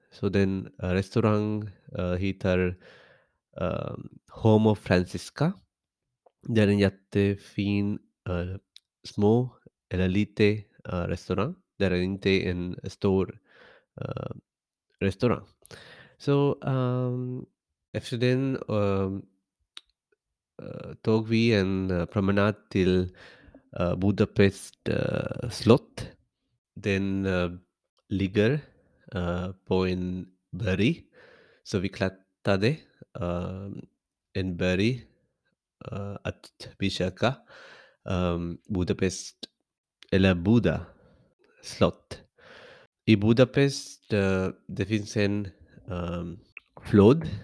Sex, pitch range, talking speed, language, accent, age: male, 95-115 Hz, 95 wpm, Swedish, Indian, 20-39